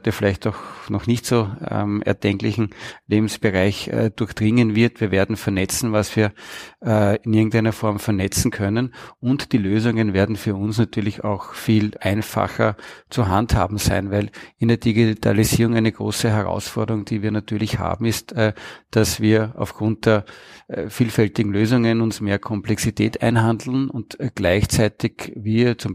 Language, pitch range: German, 100-115 Hz